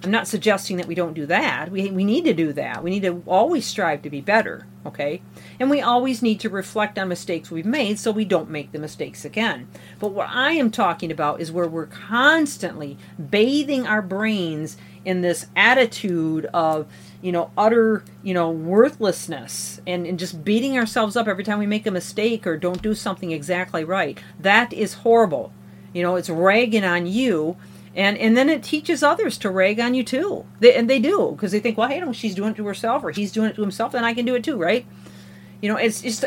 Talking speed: 220 wpm